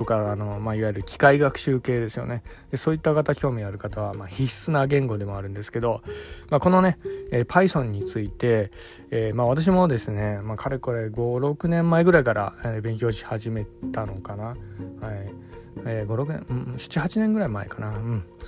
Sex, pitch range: male, 110-135 Hz